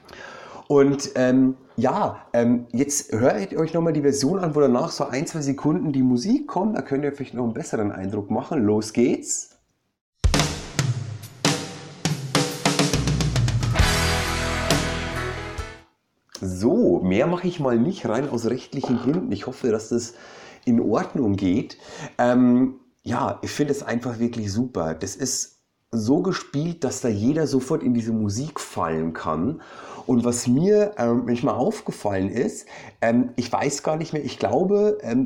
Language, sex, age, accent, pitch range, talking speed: German, male, 30-49, German, 120-155 Hz, 150 wpm